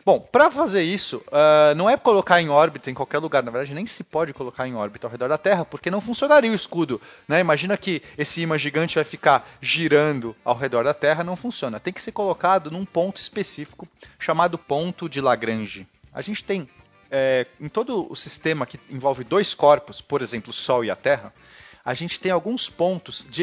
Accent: Brazilian